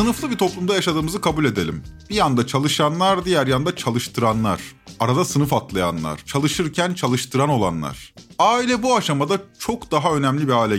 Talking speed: 145 wpm